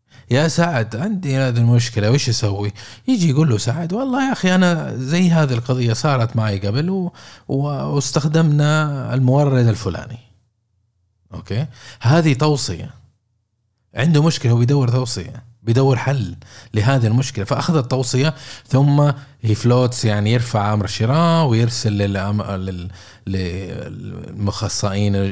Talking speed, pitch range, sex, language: 110 wpm, 105-140 Hz, male, Arabic